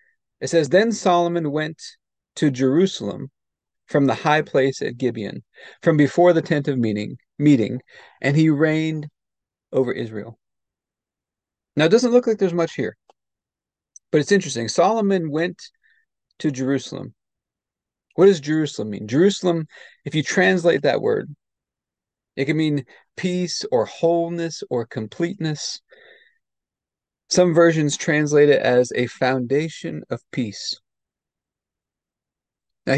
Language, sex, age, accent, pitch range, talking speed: English, male, 40-59, American, 135-175 Hz, 125 wpm